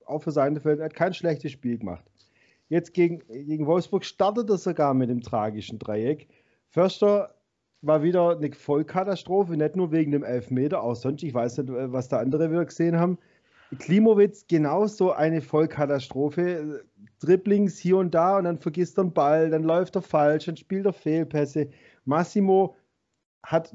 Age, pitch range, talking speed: 40-59, 140-180 Hz, 165 wpm